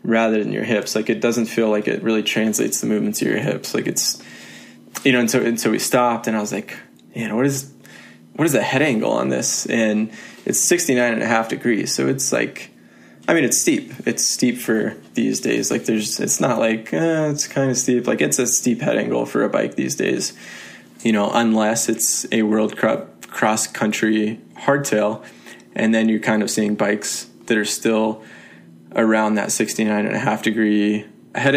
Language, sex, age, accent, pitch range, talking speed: English, male, 20-39, American, 110-120 Hz, 205 wpm